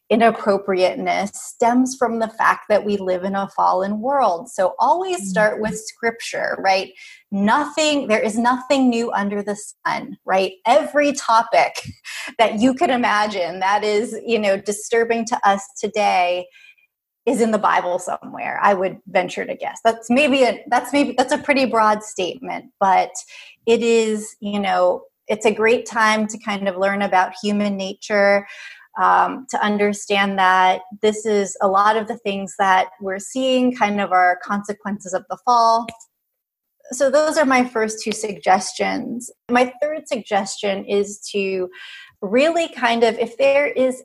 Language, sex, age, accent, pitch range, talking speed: English, female, 30-49, American, 200-245 Hz, 160 wpm